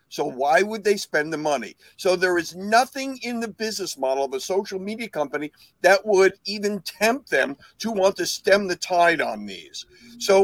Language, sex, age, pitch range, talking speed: English, male, 50-69, 165-215 Hz, 195 wpm